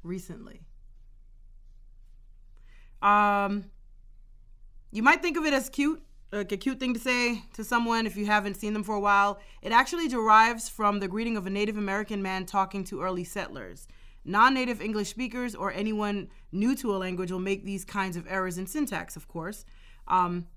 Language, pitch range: English, 175-210 Hz